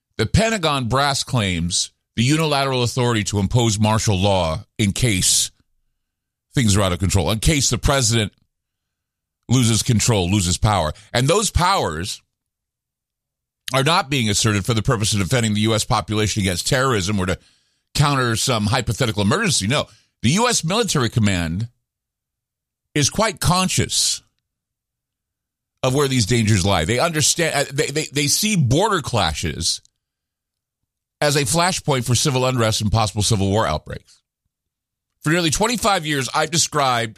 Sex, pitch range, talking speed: male, 105-145 Hz, 140 wpm